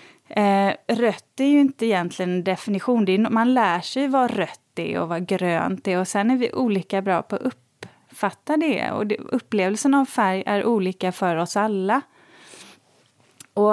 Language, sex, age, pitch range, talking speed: Swedish, female, 30-49, 195-265 Hz, 180 wpm